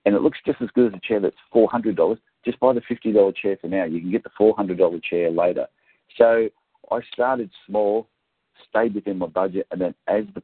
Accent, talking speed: Australian, 215 wpm